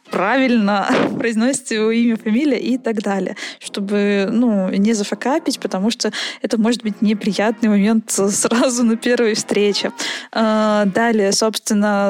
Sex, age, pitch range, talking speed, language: female, 20-39, 210-250 Hz, 125 wpm, Russian